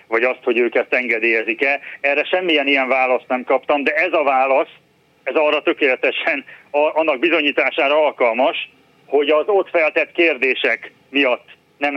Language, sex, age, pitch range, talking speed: Hungarian, male, 40-59, 125-155 Hz, 145 wpm